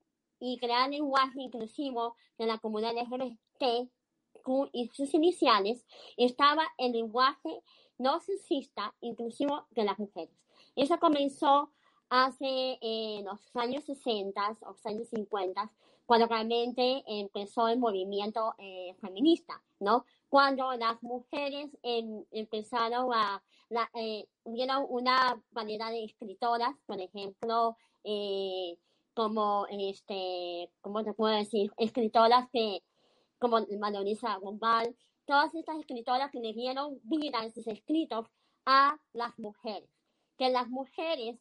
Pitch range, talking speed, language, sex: 215-265 Hz, 115 wpm, Spanish, male